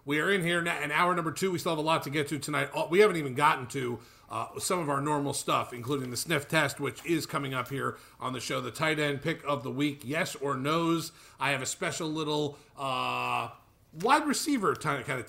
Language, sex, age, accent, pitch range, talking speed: English, male, 40-59, American, 125-150 Hz, 245 wpm